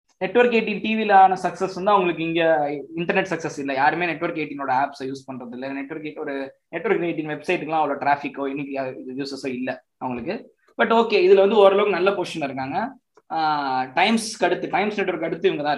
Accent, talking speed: native, 165 wpm